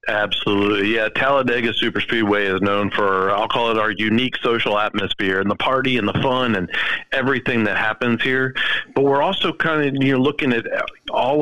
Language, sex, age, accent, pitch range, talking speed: English, male, 40-59, American, 105-135 Hz, 190 wpm